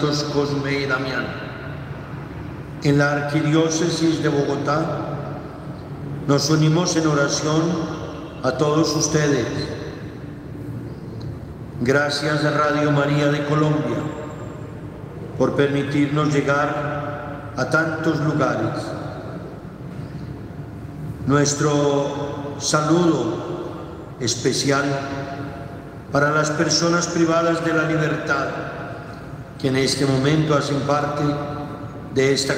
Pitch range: 140-160 Hz